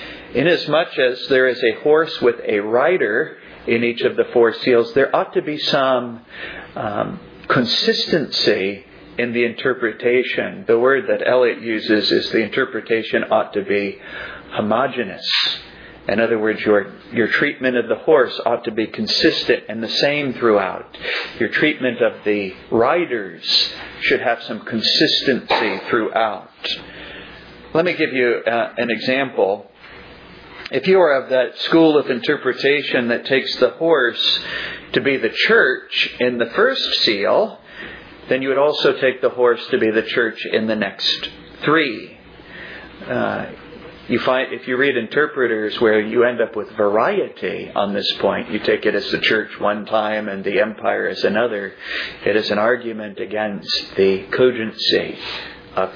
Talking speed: 155 wpm